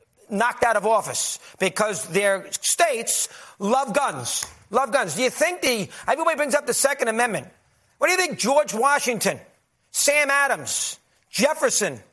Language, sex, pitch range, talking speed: English, male, 265-325 Hz, 150 wpm